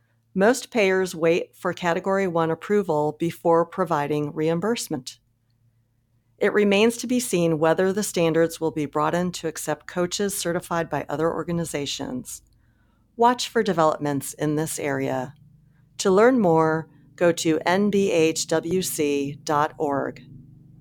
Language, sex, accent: English, female, American